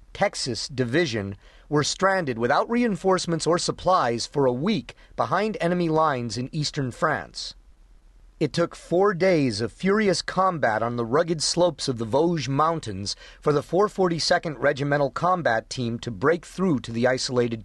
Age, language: 40-59, English